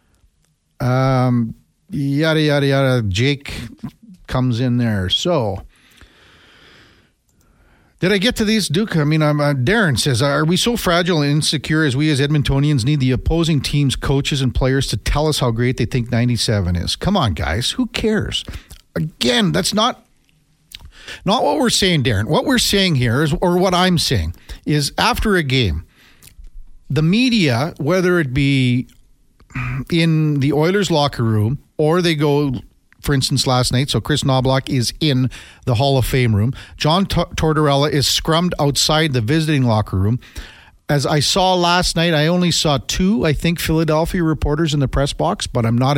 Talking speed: 170 wpm